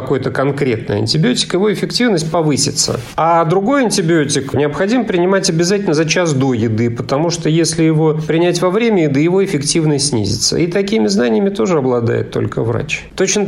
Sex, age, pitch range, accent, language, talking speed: male, 40-59, 125-160 Hz, native, Russian, 155 wpm